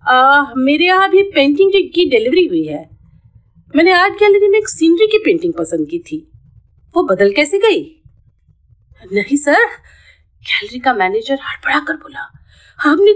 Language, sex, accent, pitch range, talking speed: Hindi, female, native, 270-375 Hz, 150 wpm